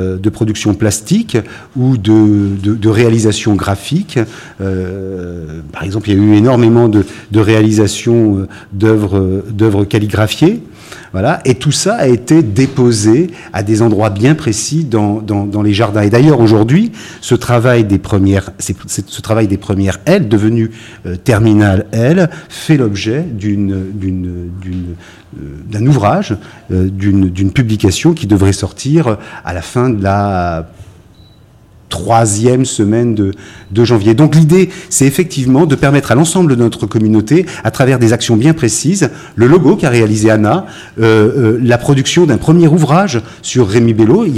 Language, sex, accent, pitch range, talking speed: French, male, French, 100-130 Hz, 155 wpm